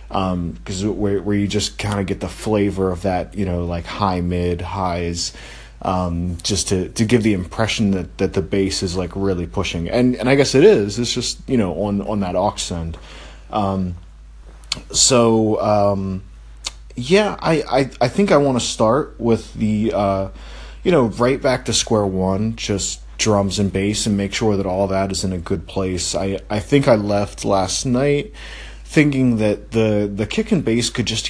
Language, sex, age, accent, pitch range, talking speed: English, male, 30-49, American, 90-115 Hz, 195 wpm